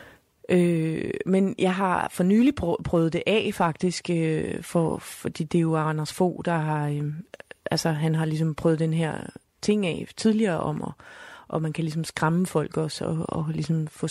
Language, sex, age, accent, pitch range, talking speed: Danish, female, 30-49, native, 155-175 Hz, 180 wpm